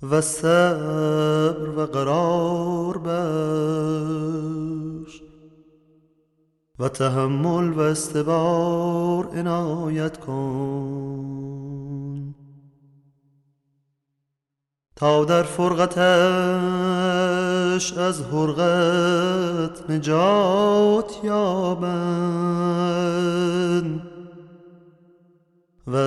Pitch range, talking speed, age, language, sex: 140-175 Hz, 45 wpm, 30-49, Persian, male